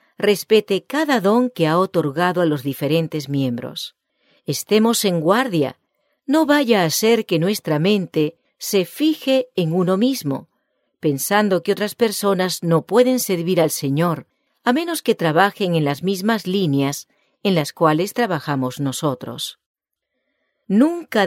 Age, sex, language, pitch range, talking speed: 40-59, female, English, 160-235 Hz, 135 wpm